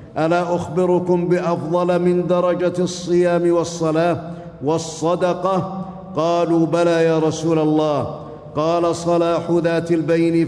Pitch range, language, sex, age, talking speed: 160-175 Hz, Arabic, male, 50-69, 95 wpm